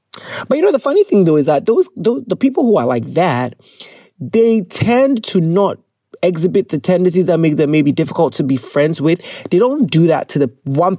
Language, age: English, 30-49